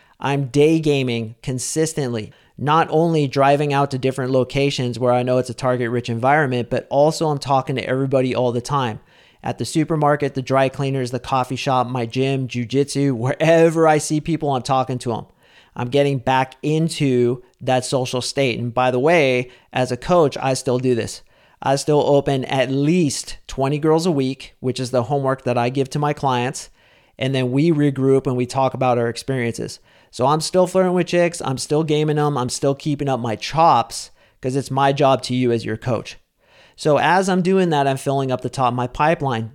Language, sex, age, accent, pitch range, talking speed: English, male, 40-59, American, 125-150 Hz, 200 wpm